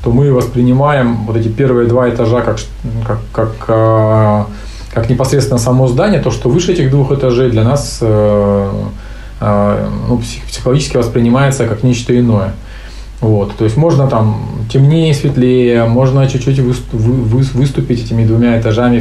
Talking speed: 150 wpm